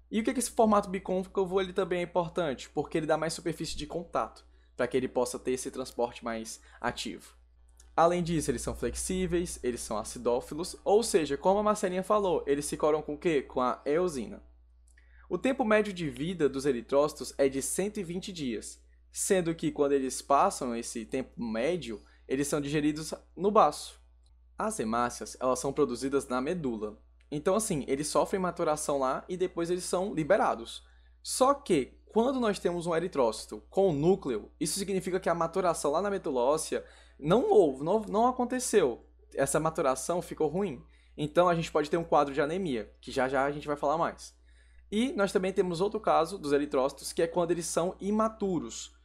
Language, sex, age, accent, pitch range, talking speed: Portuguese, male, 10-29, Brazilian, 130-185 Hz, 180 wpm